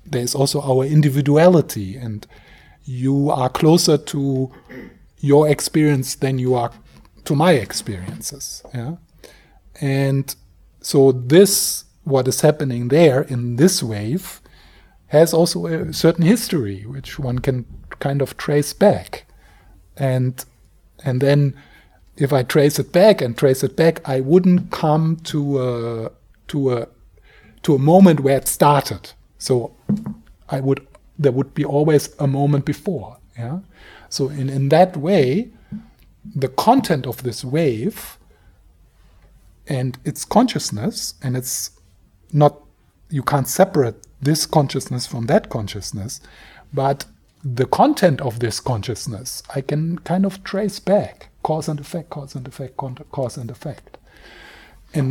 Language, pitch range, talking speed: English, 125-160 Hz, 135 wpm